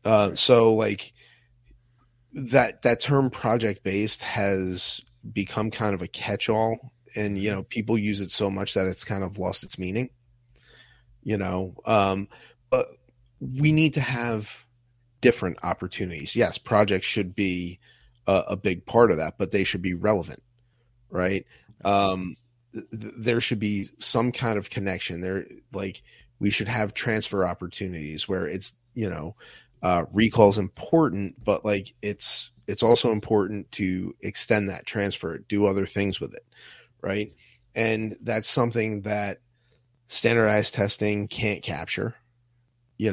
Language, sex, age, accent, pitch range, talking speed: English, male, 30-49, American, 95-120 Hz, 145 wpm